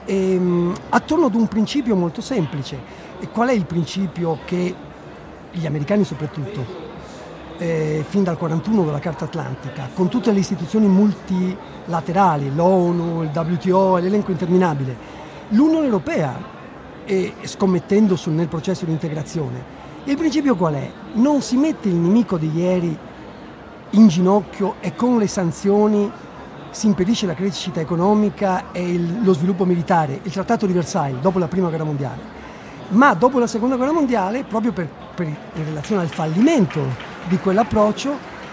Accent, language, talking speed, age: native, Italian, 140 wpm, 50-69